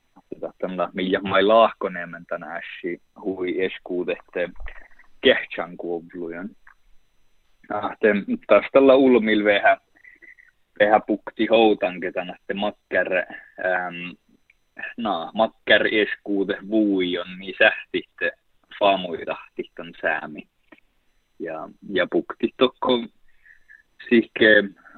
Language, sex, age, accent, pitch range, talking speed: Czech, male, 20-39, Finnish, 95-110 Hz, 60 wpm